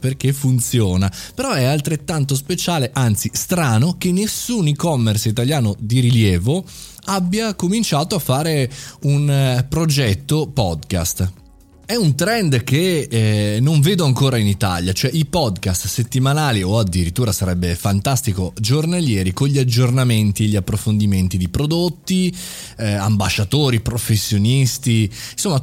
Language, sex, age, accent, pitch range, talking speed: Italian, male, 20-39, native, 105-145 Hz, 120 wpm